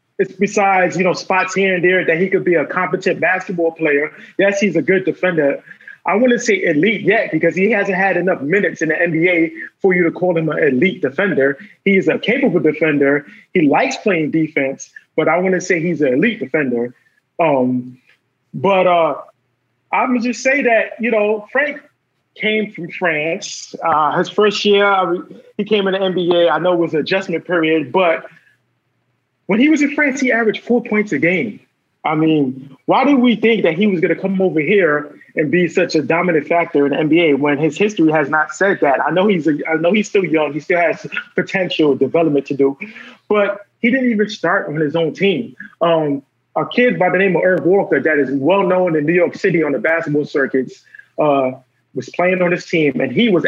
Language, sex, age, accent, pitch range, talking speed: English, male, 20-39, American, 155-200 Hz, 210 wpm